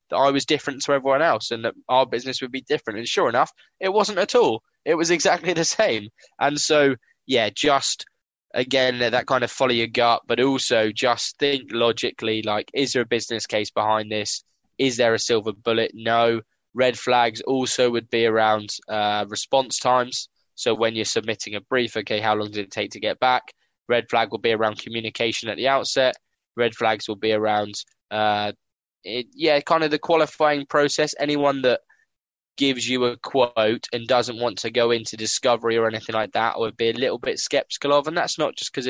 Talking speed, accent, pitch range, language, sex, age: 200 wpm, British, 110-135 Hz, English, male, 10-29